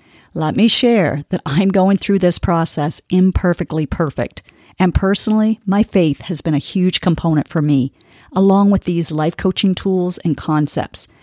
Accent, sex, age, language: American, female, 40-59, English